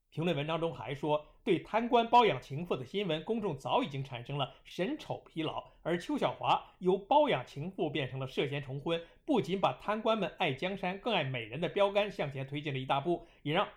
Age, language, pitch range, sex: 50-69, Chinese, 145-210 Hz, male